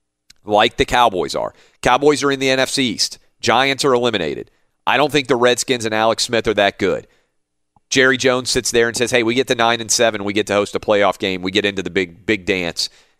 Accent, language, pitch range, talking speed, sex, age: American, English, 90-125 Hz, 230 wpm, male, 40-59